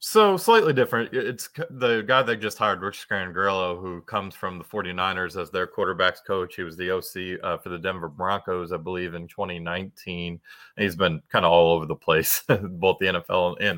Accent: American